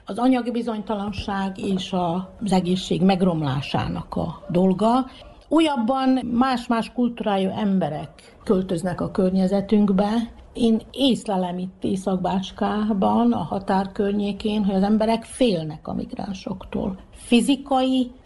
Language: Hungarian